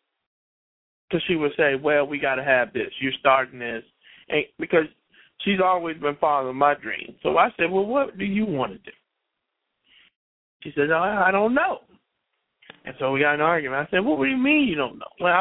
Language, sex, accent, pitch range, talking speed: English, male, American, 150-235 Hz, 205 wpm